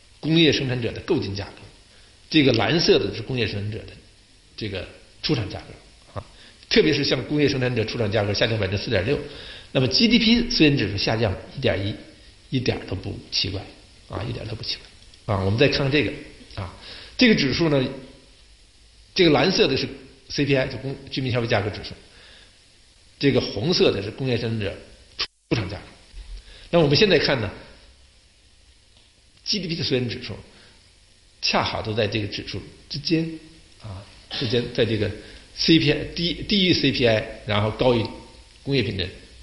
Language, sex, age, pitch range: Chinese, male, 60-79, 100-140 Hz